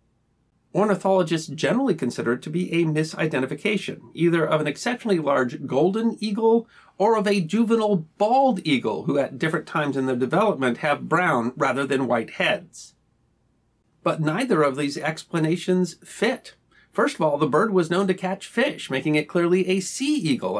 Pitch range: 155-210 Hz